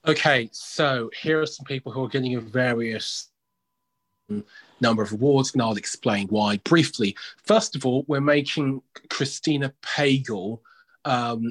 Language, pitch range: English, 110-145 Hz